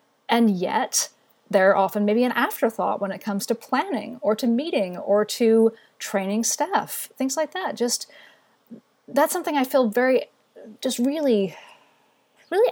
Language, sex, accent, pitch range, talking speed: English, female, American, 205-270 Hz, 145 wpm